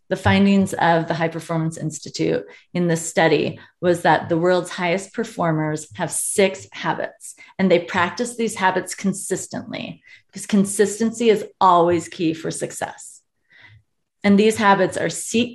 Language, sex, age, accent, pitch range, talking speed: English, female, 30-49, American, 170-210 Hz, 145 wpm